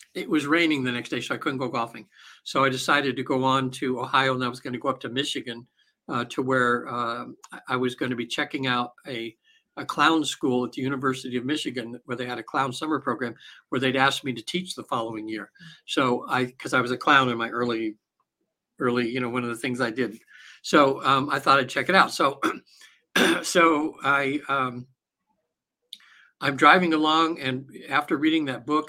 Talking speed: 215 wpm